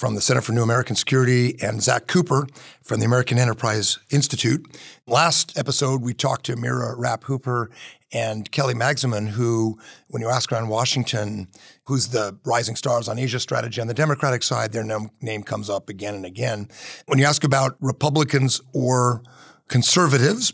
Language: English